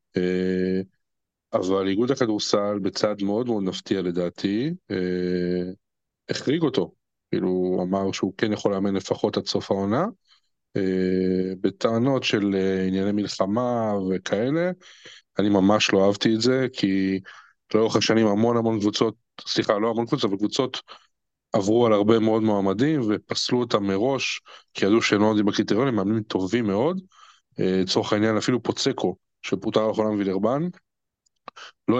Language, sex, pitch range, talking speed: Hebrew, male, 95-115 Hz, 135 wpm